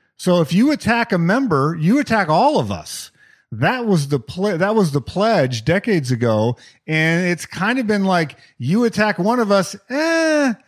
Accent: American